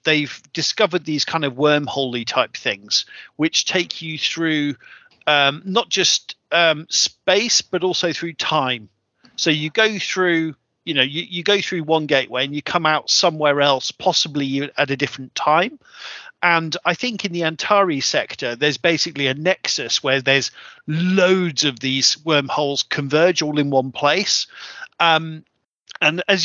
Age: 40-59